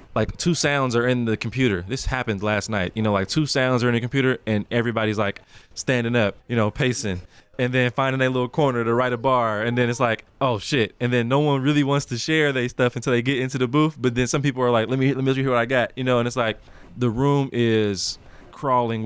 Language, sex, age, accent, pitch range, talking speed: English, male, 20-39, American, 105-125 Hz, 265 wpm